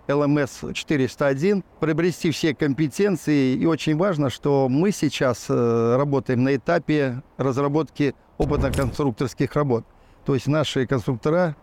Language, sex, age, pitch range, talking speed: Russian, male, 50-69, 125-150 Hz, 105 wpm